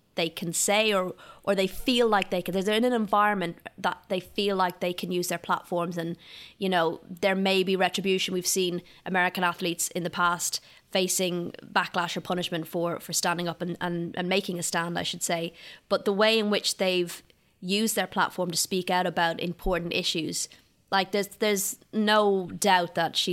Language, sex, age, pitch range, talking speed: English, female, 20-39, 170-195 Hz, 195 wpm